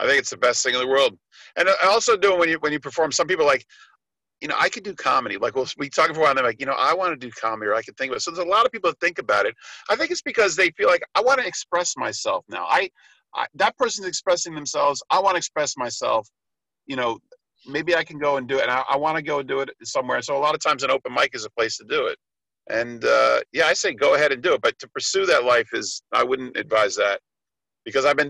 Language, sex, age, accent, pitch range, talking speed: English, male, 50-69, American, 135-210 Hz, 305 wpm